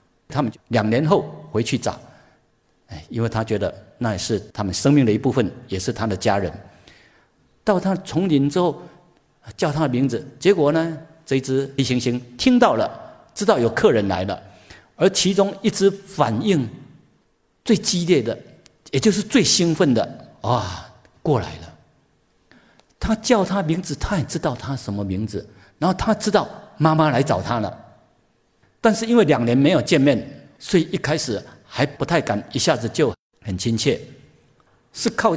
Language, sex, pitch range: Chinese, male, 110-175 Hz